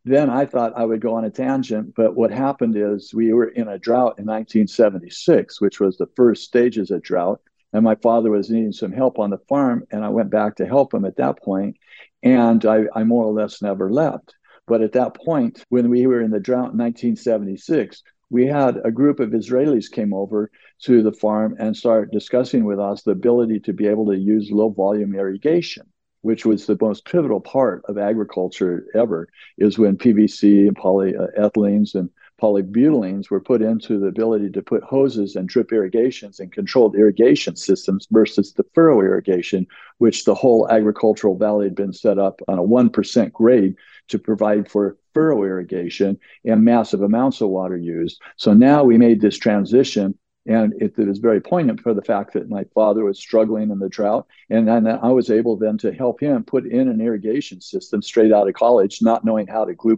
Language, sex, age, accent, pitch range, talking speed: English, male, 60-79, American, 100-120 Hz, 200 wpm